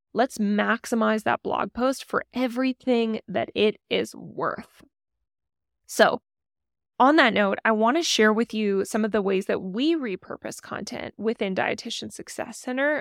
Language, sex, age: English, female, 10-29